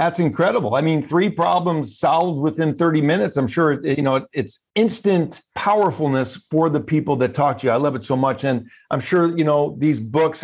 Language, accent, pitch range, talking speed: English, American, 135-165 Hz, 205 wpm